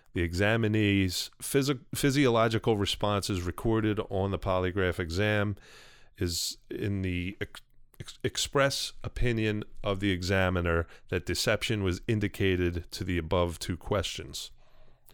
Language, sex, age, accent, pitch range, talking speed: English, male, 30-49, American, 90-110 Hz, 105 wpm